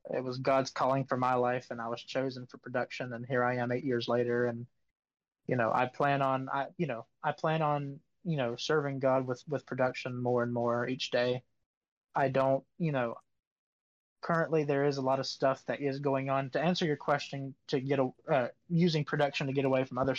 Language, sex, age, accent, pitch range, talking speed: English, male, 20-39, American, 125-145 Hz, 220 wpm